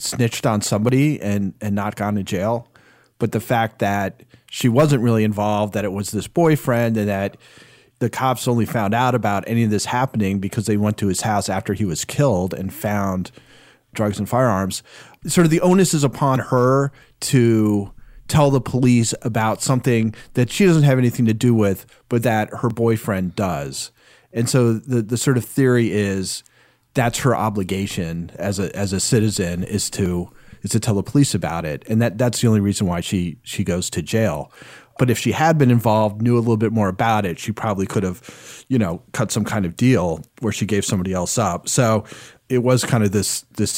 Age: 40-59